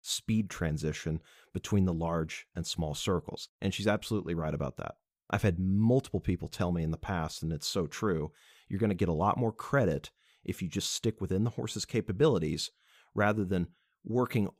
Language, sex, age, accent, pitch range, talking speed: English, male, 30-49, American, 85-105 Hz, 190 wpm